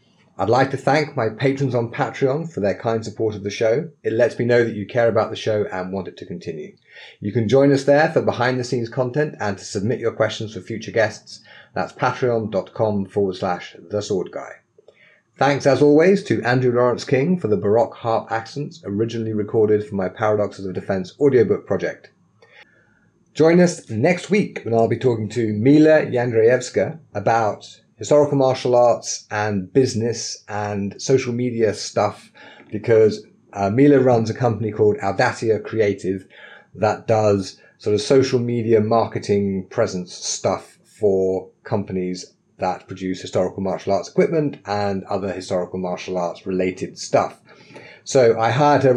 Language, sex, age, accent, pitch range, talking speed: English, male, 30-49, British, 100-130 Hz, 160 wpm